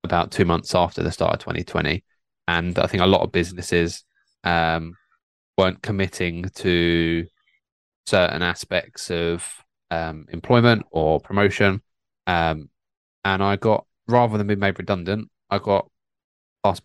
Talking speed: 135 wpm